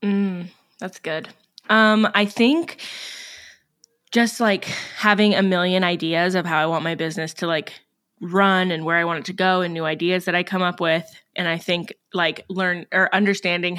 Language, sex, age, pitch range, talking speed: English, female, 20-39, 170-200 Hz, 185 wpm